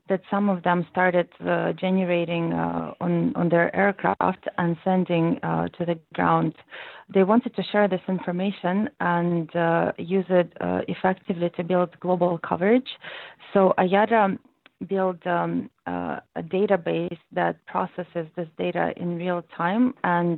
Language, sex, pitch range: English, female, 170-190 Hz